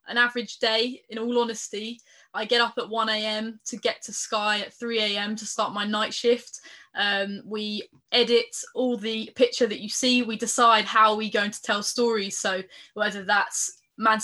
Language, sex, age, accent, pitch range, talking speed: English, female, 10-29, British, 215-245 Hz, 180 wpm